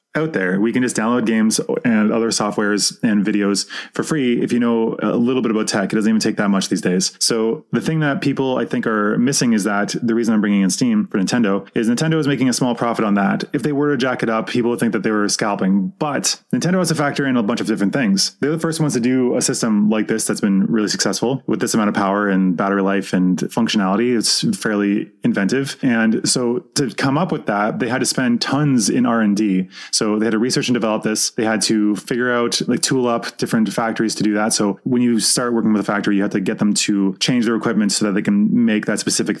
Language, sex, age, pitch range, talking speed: English, male, 20-39, 105-125 Hz, 255 wpm